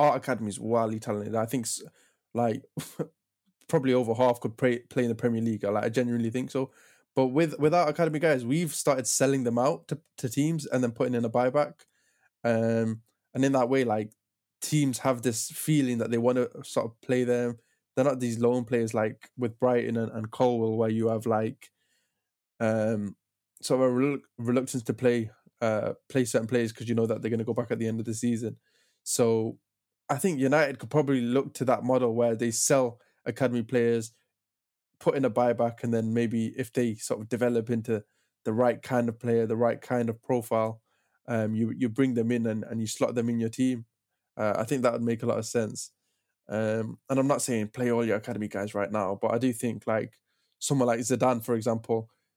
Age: 10-29